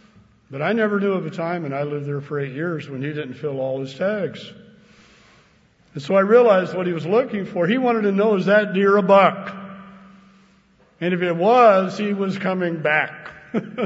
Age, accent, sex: 60-79, American, male